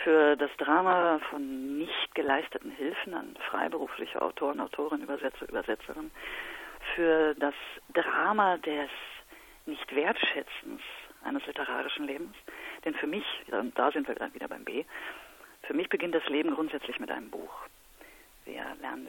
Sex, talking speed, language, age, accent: female, 130 wpm, German, 40-59, German